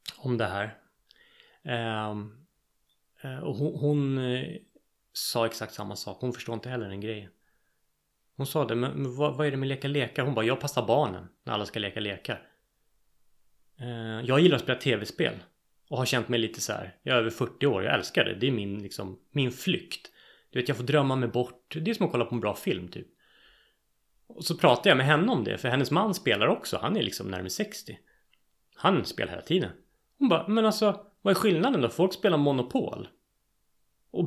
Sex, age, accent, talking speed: male, 30-49, native, 200 wpm